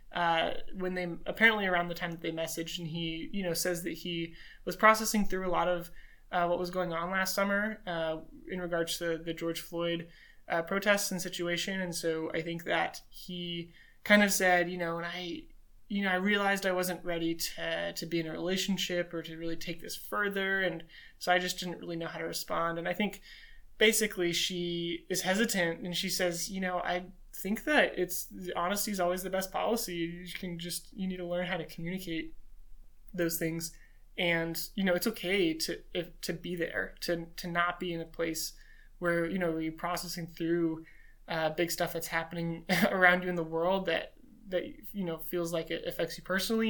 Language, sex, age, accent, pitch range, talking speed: English, male, 20-39, American, 170-190 Hz, 205 wpm